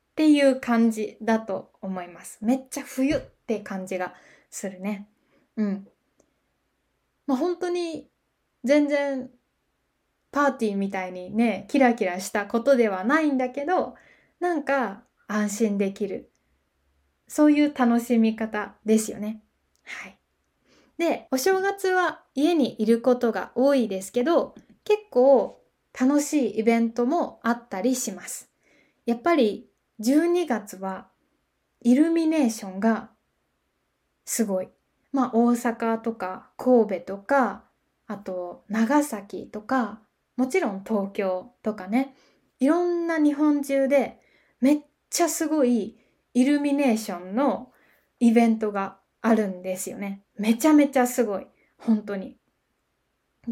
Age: 20-39